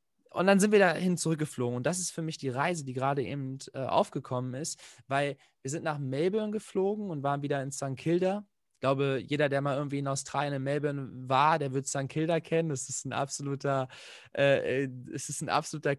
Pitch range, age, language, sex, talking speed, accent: 135-165 Hz, 20-39, German, male, 190 wpm, German